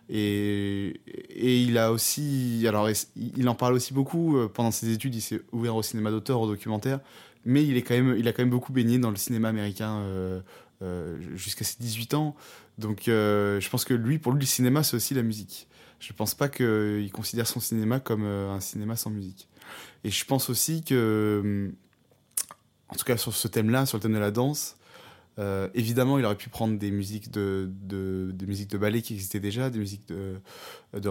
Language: French